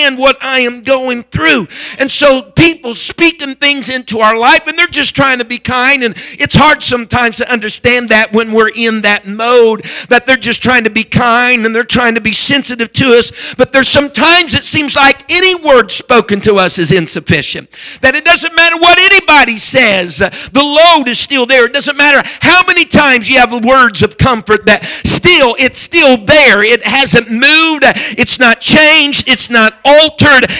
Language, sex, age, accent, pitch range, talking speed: English, male, 50-69, American, 235-300 Hz, 190 wpm